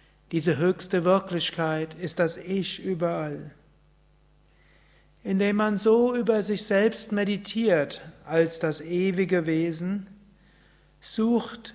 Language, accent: German, German